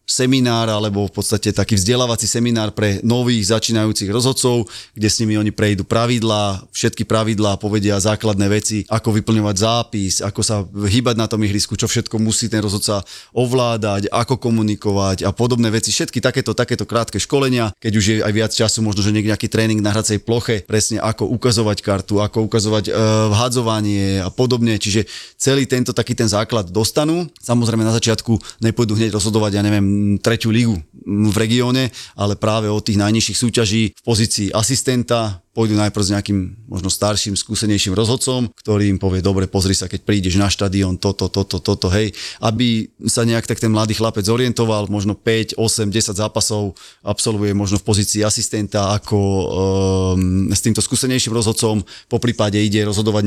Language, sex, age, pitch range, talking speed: Slovak, male, 30-49, 105-115 Hz, 165 wpm